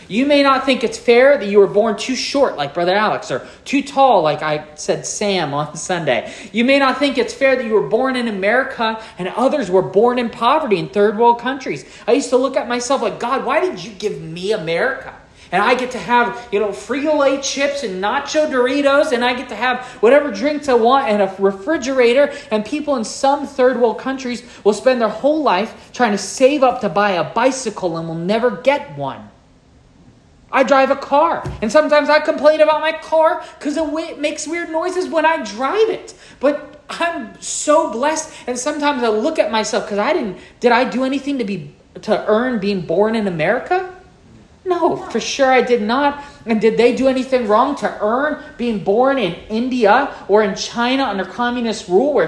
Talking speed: 205 wpm